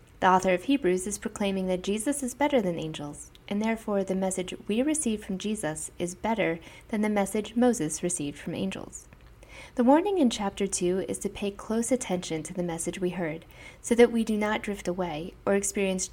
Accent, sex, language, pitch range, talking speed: American, female, English, 180-225 Hz, 195 wpm